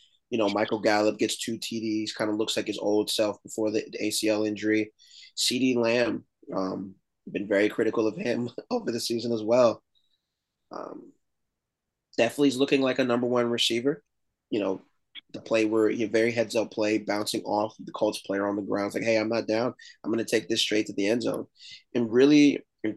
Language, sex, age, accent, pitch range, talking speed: English, male, 20-39, American, 105-120 Hz, 200 wpm